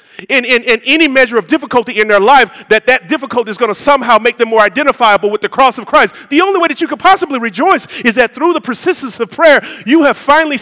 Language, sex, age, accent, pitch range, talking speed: English, male, 40-59, American, 170-275 Hz, 250 wpm